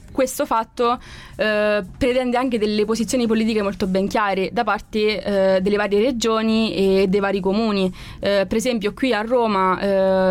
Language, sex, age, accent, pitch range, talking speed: Italian, female, 20-39, native, 190-215 Hz, 165 wpm